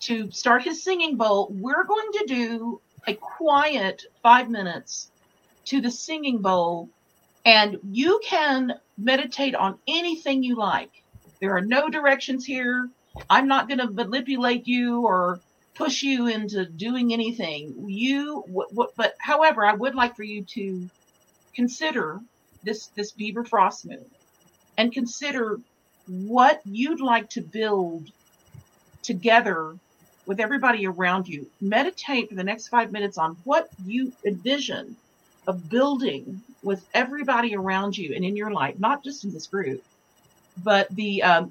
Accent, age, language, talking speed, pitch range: American, 50-69, English, 140 wpm, 195-270 Hz